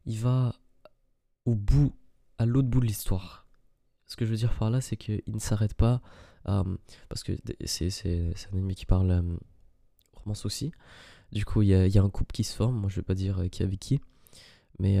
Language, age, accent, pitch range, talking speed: French, 20-39, French, 95-115 Hz, 230 wpm